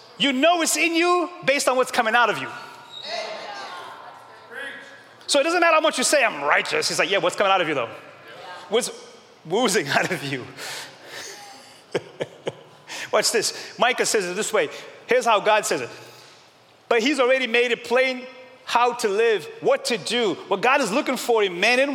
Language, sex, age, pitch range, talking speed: English, male, 30-49, 215-310 Hz, 185 wpm